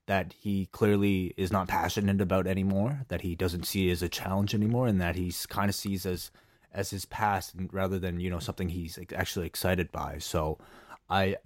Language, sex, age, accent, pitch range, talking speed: English, male, 20-39, American, 90-105 Hz, 195 wpm